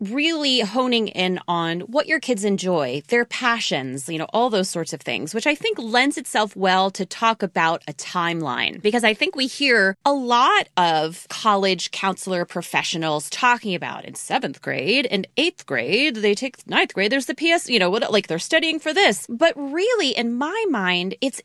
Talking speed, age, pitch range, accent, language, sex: 190 wpm, 30-49, 185-290 Hz, American, English, female